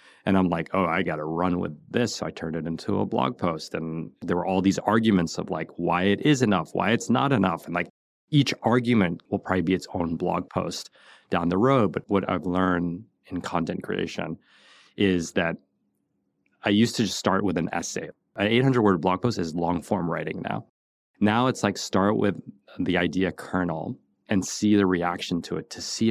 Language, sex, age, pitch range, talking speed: English, male, 30-49, 85-100 Hz, 205 wpm